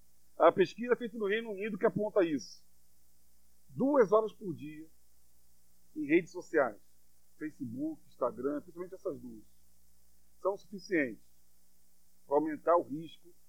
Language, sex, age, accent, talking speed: Portuguese, male, 40-59, Brazilian, 120 wpm